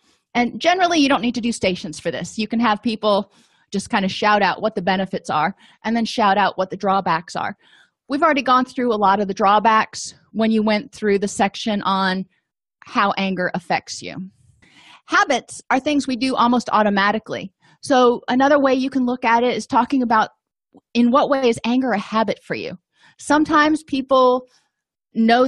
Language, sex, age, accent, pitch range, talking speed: English, female, 30-49, American, 195-250 Hz, 190 wpm